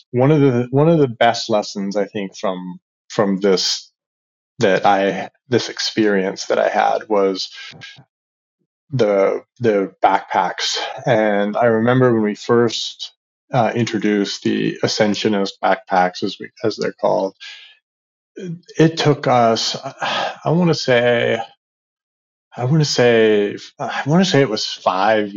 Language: English